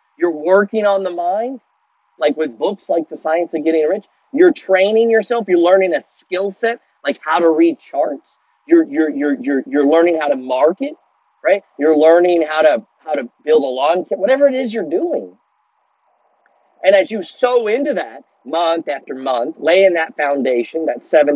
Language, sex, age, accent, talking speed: English, male, 40-59, American, 185 wpm